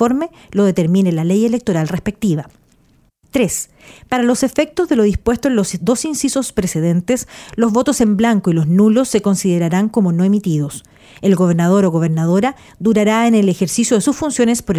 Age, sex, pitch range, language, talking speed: 40-59, female, 185-235 Hz, Spanish, 170 wpm